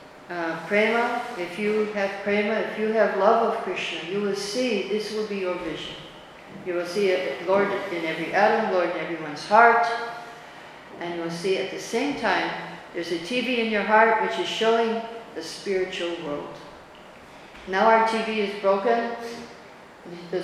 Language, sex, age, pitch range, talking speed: English, female, 60-79, 175-215 Hz, 170 wpm